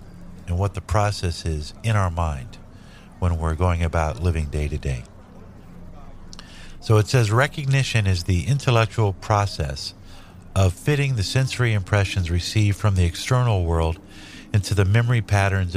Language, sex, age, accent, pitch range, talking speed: English, male, 50-69, American, 90-110 Hz, 145 wpm